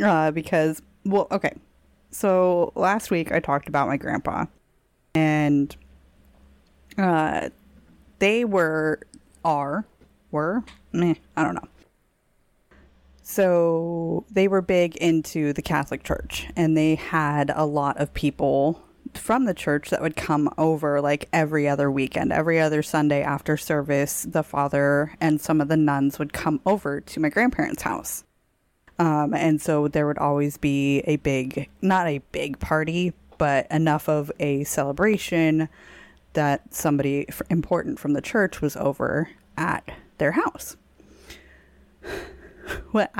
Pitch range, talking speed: 140-175 Hz, 135 wpm